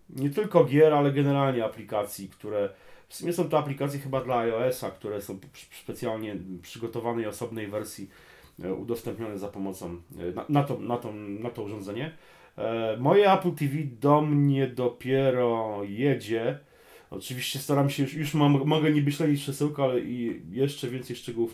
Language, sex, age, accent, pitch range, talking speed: Polish, male, 30-49, native, 100-135 Hz, 155 wpm